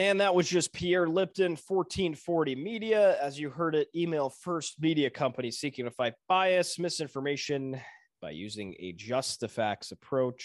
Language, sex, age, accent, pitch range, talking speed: English, male, 20-39, American, 120-175 Hz, 160 wpm